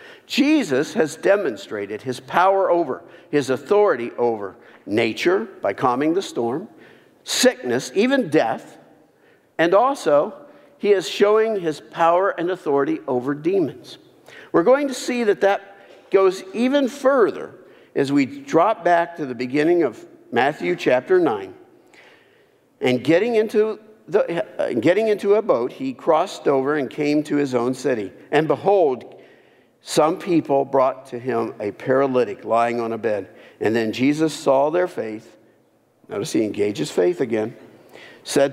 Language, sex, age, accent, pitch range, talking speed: English, male, 50-69, American, 135-220 Hz, 140 wpm